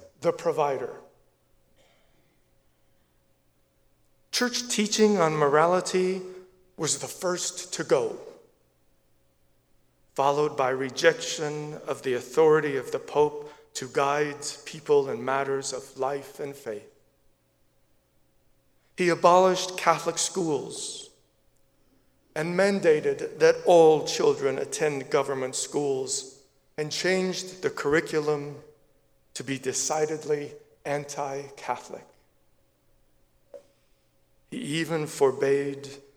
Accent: American